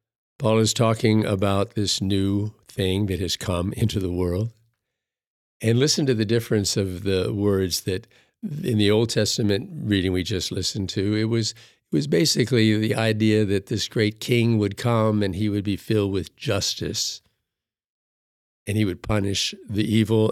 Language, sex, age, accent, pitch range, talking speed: English, male, 50-69, American, 100-115 Hz, 165 wpm